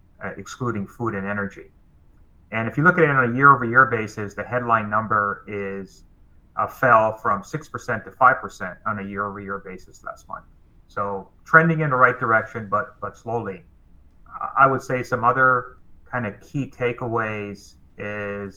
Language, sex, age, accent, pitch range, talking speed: English, male, 30-49, American, 100-125 Hz, 170 wpm